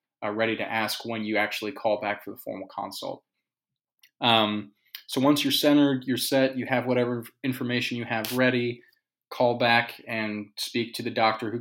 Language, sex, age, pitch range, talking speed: English, male, 20-39, 110-125 Hz, 180 wpm